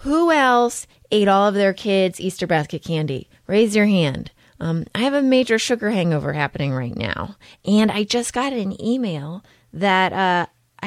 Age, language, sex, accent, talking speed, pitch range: 30-49, English, female, American, 170 wpm, 155-195 Hz